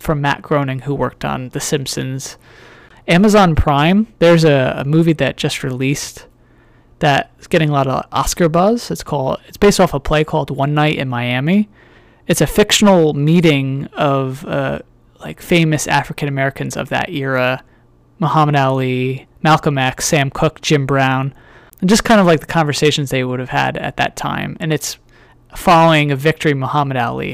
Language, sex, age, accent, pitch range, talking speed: English, male, 20-39, American, 130-170 Hz, 170 wpm